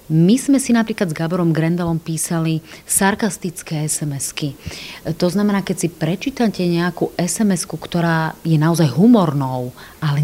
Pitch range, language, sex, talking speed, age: 160-200 Hz, Slovak, female, 130 wpm, 30-49